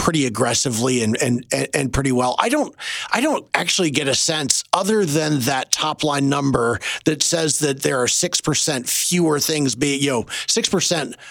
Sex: male